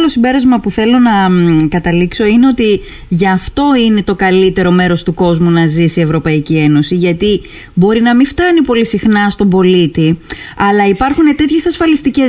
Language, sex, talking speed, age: Greek, female, 170 wpm, 20-39